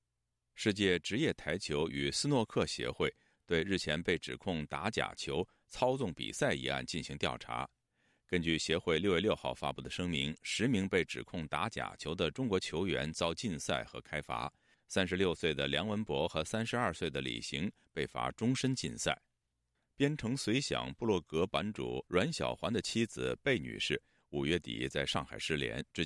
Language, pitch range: Chinese, 70-105 Hz